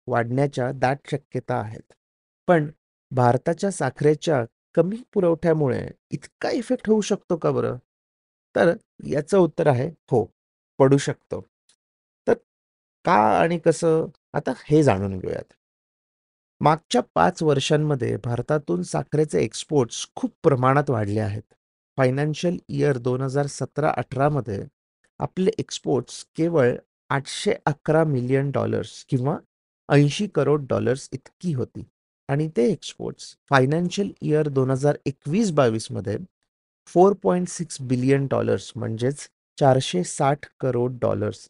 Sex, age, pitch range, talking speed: male, 30-49, 120-160 Hz, 80 wpm